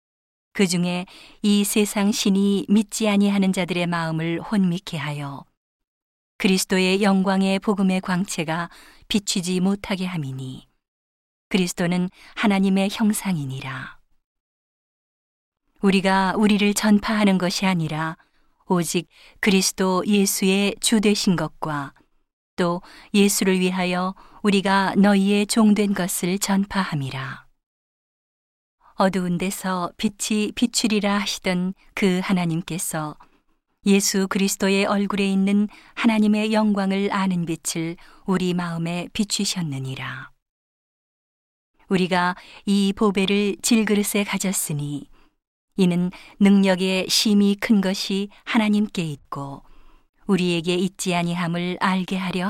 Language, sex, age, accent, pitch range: Korean, female, 40-59, native, 175-205 Hz